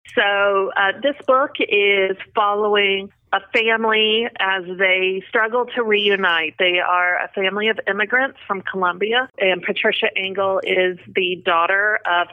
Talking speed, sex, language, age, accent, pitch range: 135 wpm, female, English, 30-49, American, 180-210 Hz